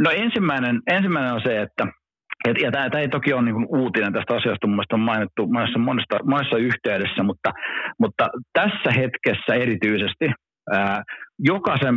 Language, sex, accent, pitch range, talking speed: Finnish, male, native, 95-125 Hz, 140 wpm